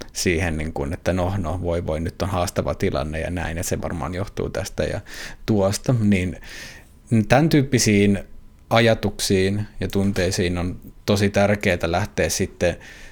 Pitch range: 90-115 Hz